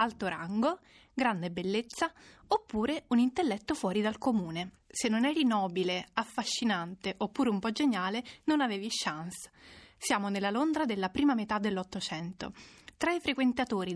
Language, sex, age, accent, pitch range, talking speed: Italian, female, 20-39, native, 195-270 Hz, 140 wpm